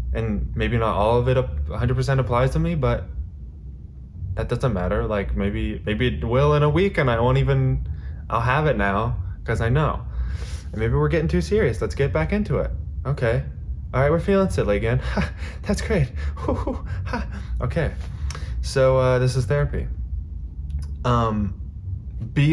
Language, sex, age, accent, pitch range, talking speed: English, male, 20-39, American, 75-115 Hz, 160 wpm